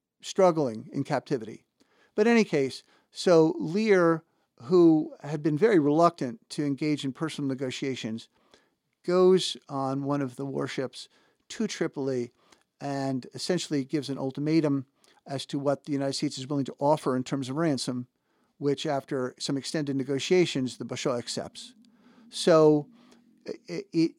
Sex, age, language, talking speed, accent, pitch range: male, 50-69, English, 140 wpm, American, 135-170 Hz